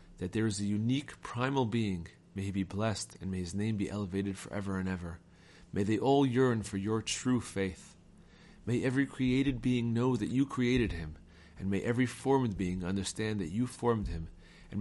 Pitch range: 95-115 Hz